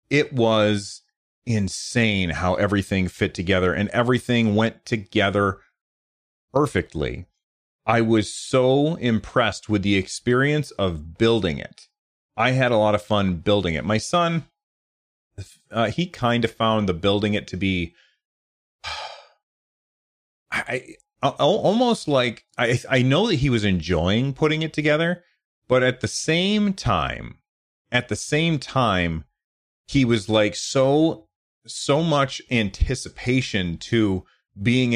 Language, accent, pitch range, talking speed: English, American, 95-130 Hz, 125 wpm